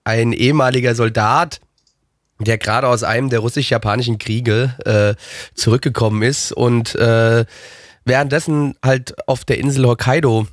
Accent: German